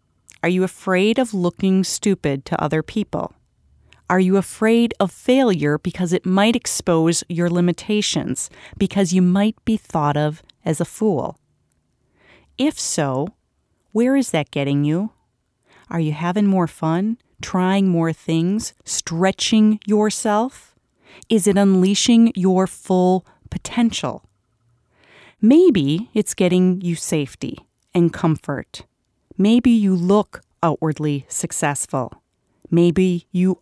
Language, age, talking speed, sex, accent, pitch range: English, 40-59, 120 wpm, female, American, 155-200 Hz